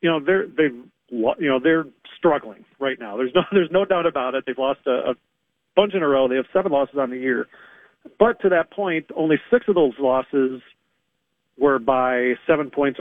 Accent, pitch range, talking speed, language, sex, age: American, 130-170 Hz, 205 wpm, English, male, 40-59